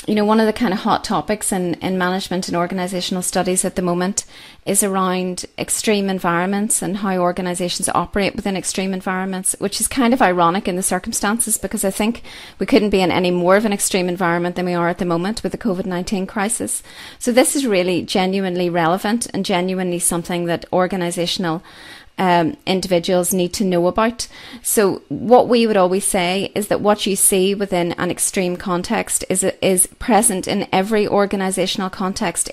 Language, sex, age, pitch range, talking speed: English, female, 30-49, 180-210 Hz, 185 wpm